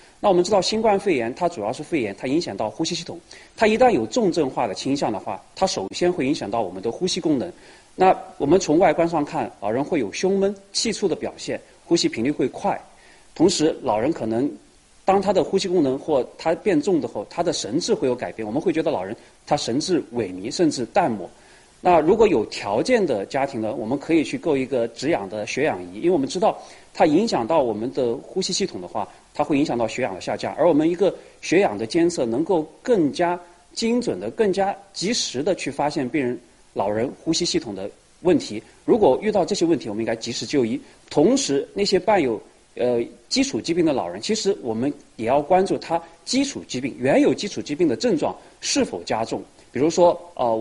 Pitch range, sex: 145-220 Hz, male